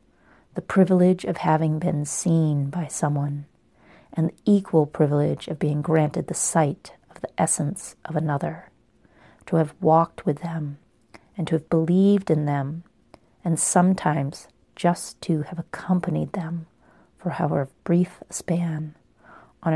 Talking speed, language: 140 wpm, English